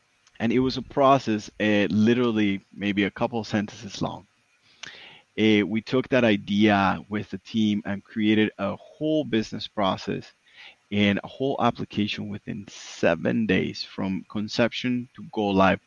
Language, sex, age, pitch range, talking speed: English, male, 30-49, 100-115 Hz, 150 wpm